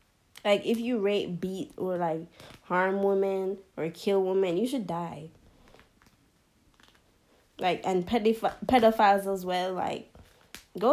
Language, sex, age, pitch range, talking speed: English, female, 10-29, 170-210 Hz, 125 wpm